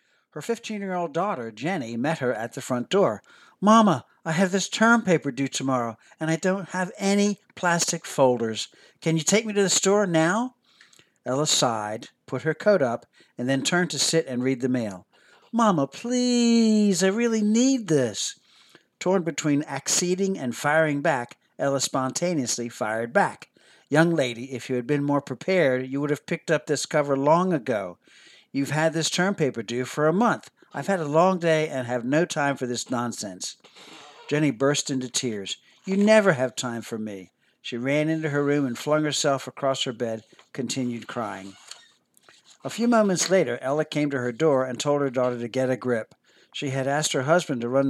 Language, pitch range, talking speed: English, 125-175 Hz, 185 wpm